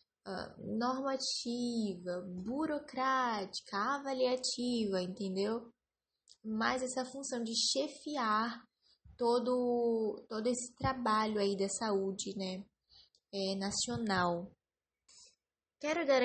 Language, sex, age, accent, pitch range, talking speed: English, female, 10-29, Brazilian, 205-265 Hz, 80 wpm